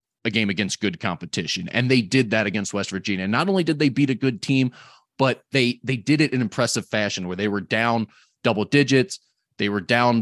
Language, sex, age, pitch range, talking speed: English, male, 30-49, 105-130 Hz, 225 wpm